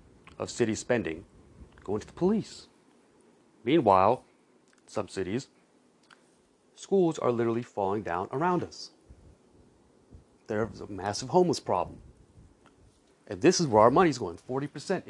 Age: 30-49